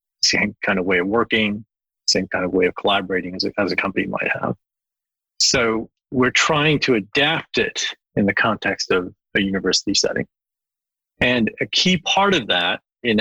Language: English